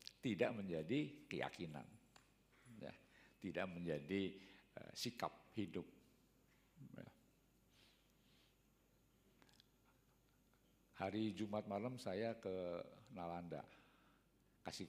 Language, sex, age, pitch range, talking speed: Indonesian, male, 50-69, 90-130 Hz, 70 wpm